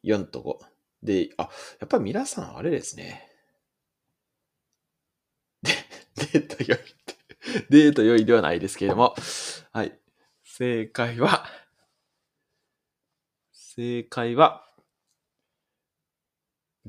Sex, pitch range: male, 105-160 Hz